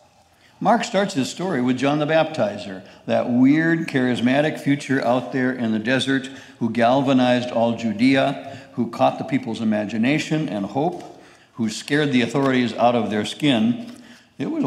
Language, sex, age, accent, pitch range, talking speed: English, male, 60-79, American, 115-145 Hz, 155 wpm